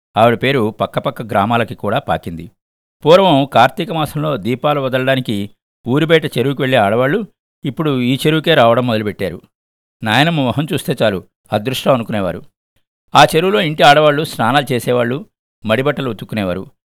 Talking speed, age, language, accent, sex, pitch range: 120 wpm, 50-69, Telugu, native, male, 110-145 Hz